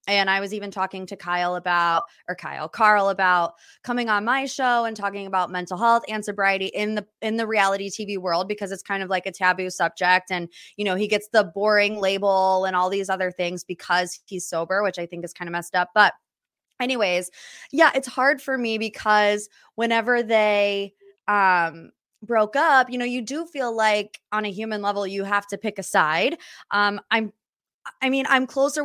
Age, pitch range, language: 20-39, 190-225 Hz, English